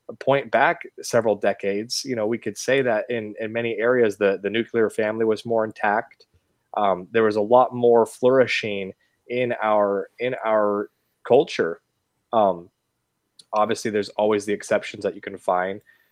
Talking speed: 160 wpm